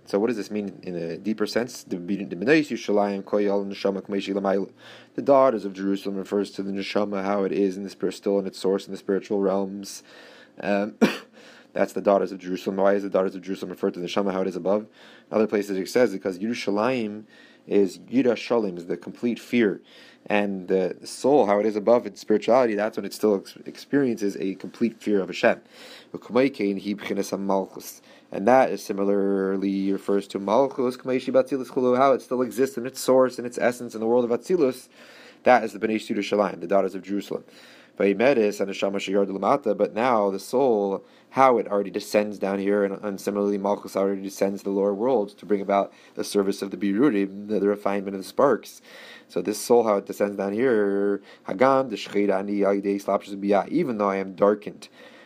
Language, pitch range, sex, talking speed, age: English, 100-105 Hz, male, 175 wpm, 20-39